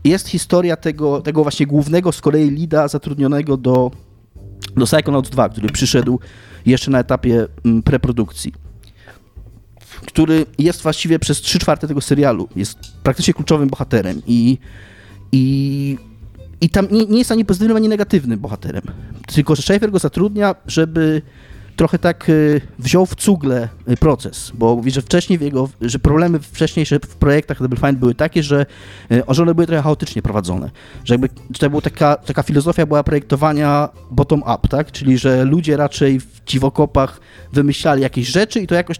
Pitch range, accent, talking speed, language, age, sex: 120-155 Hz, native, 155 wpm, Polish, 30-49, male